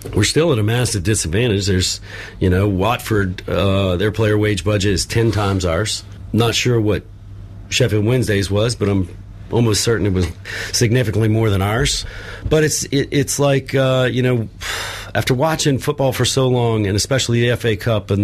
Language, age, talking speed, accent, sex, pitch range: English, 40-59, 180 wpm, American, male, 100-120 Hz